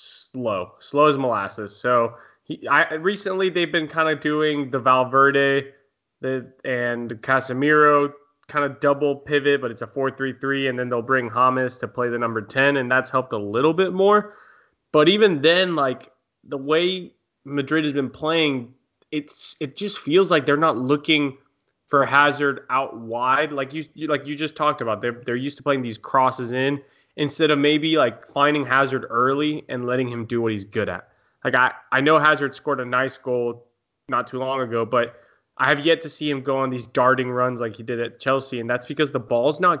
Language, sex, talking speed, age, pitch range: English, male, 200 wpm, 20-39, 125-150 Hz